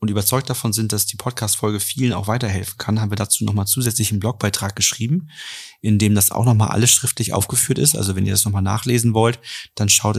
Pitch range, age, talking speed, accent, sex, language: 105-125 Hz, 30-49, 220 wpm, German, male, German